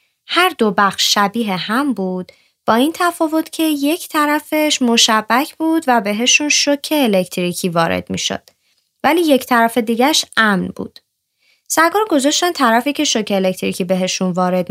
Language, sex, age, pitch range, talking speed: Persian, female, 20-39, 185-260 Hz, 140 wpm